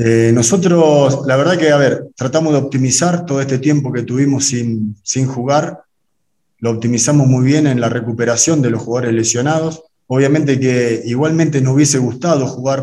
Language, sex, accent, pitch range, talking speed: Spanish, male, Argentinian, 120-150 Hz, 170 wpm